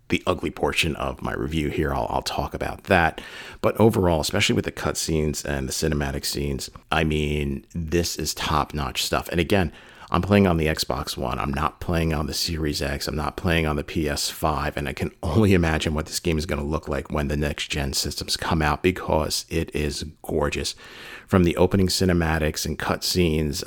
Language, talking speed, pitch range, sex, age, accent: English, 200 wpm, 75-90 Hz, male, 40-59, American